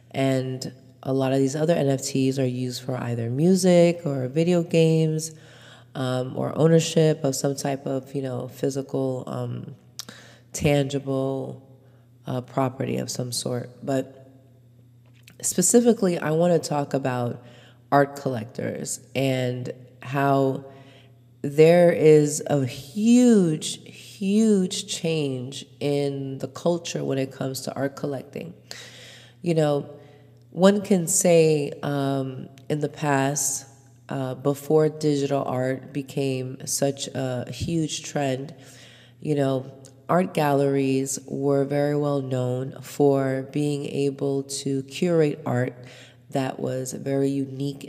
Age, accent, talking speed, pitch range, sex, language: 30-49, American, 120 wpm, 130-150 Hz, female, English